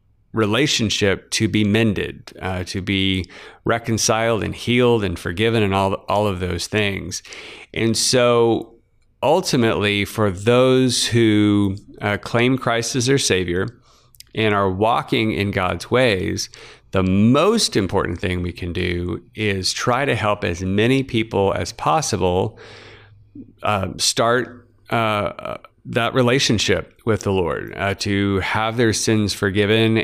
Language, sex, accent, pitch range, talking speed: English, male, American, 95-115 Hz, 130 wpm